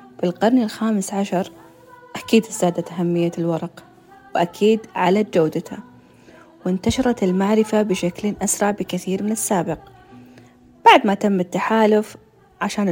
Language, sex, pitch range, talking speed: Arabic, female, 180-225 Hz, 105 wpm